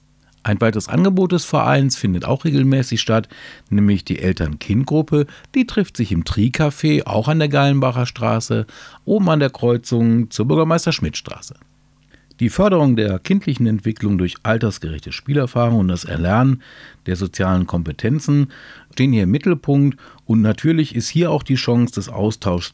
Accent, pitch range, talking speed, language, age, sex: German, 100-140 Hz, 145 wpm, German, 50-69, male